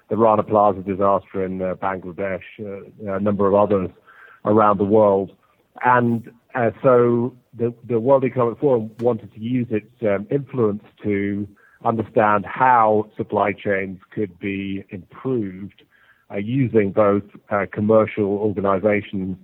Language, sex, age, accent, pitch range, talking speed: English, male, 40-59, British, 100-115 Hz, 135 wpm